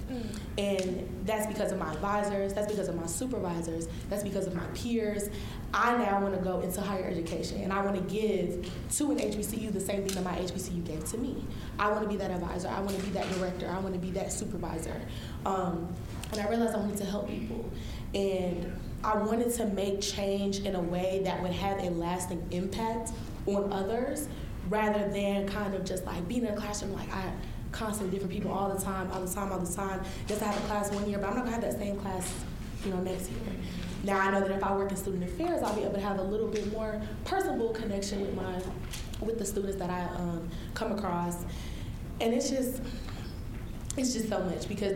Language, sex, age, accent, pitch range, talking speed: English, female, 20-39, American, 185-205 Hz, 225 wpm